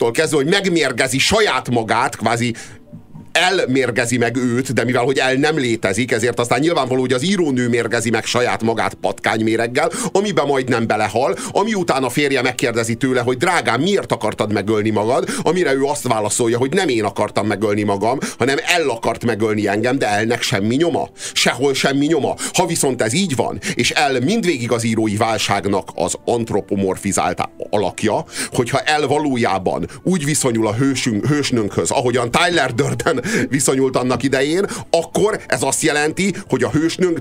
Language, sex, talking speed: Hungarian, male, 160 wpm